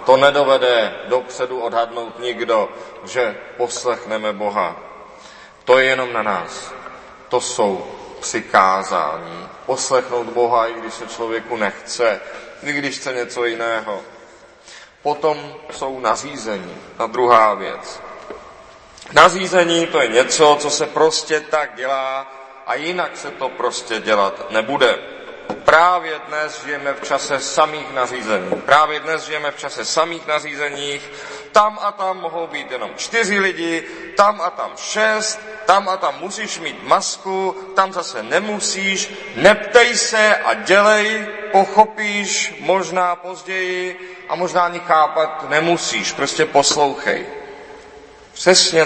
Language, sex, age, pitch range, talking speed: Czech, male, 30-49, 130-190 Hz, 125 wpm